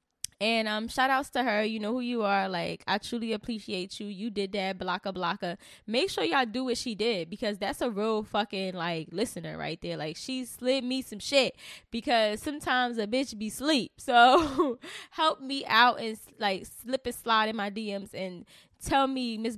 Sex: female